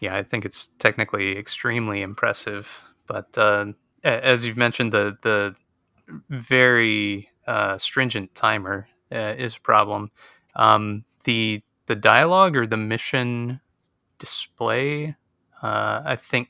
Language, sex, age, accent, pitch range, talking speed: English, male, 30-49, American, 100-120 Hz, 120 wpm